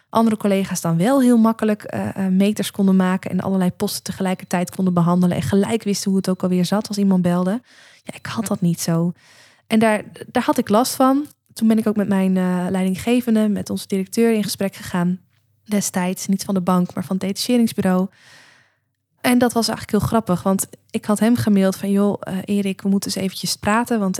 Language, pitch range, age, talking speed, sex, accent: Dutch, 185-225 Hz, 20-39, 210 wpm, female, Dutch